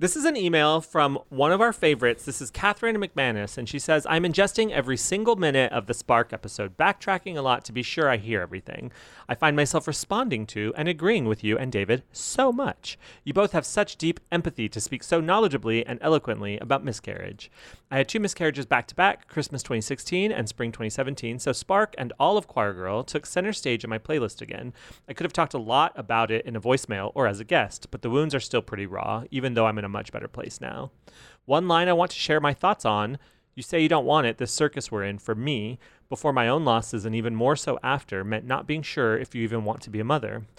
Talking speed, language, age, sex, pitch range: 235 wpm, English, 30-49, male, 115-150 Hz